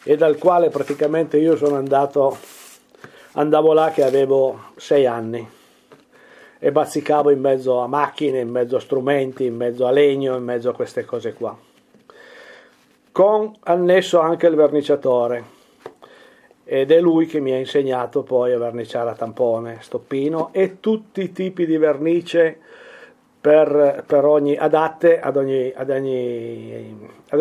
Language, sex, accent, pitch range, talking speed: Italian, male, native, 135-170 Hz, 145 wpm